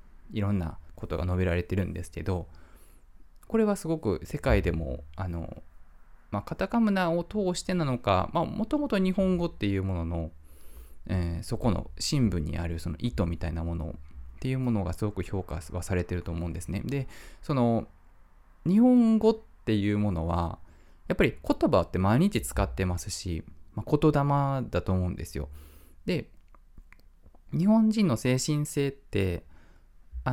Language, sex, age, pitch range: Japanese, male, 20-39, 85-140 Hz